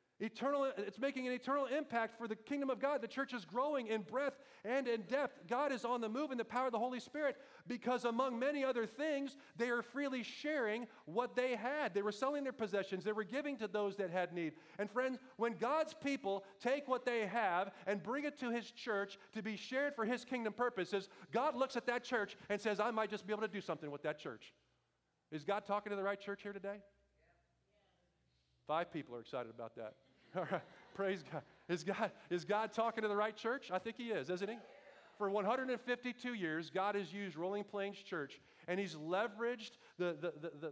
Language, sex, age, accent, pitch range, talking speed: Dutch, male, 40-59, American, 190-245 Hz, 210 wpm